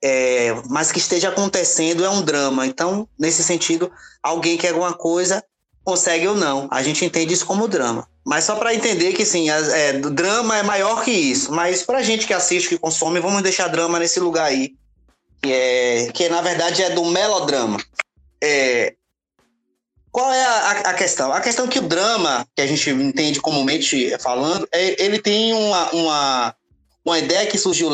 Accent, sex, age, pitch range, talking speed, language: Brazilian, male, 20-39, 160-225 Hz, 180 wpm, Portuguese